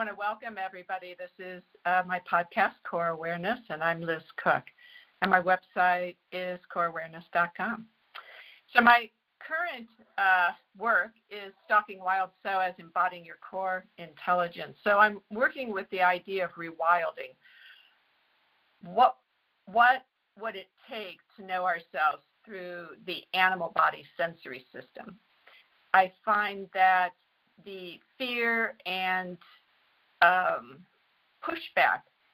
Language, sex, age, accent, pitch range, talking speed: English, female, 50-69, American, 175-210 Hz, 115 wpm